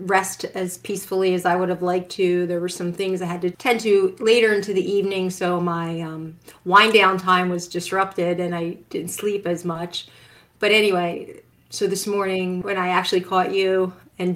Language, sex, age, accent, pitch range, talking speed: English, female, 30-49, American, 180-215 Hz, 195 wpm